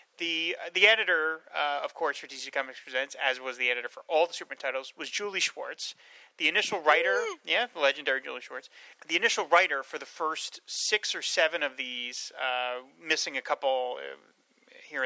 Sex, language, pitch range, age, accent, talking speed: male, English, 135-195 Hz, 30-49, American, 190 wpm